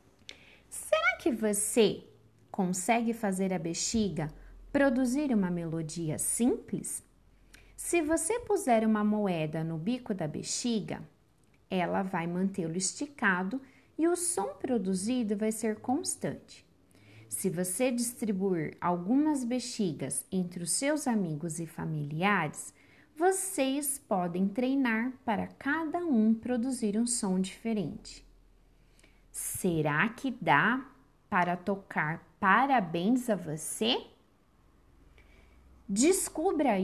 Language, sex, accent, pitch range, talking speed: Portuguese, female, Brazilian, 185-275 Hz, 100 wpm